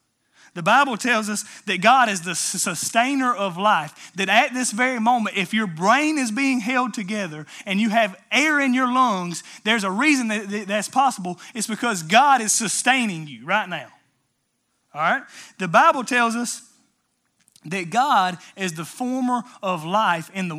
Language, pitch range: English, 180-240 Hz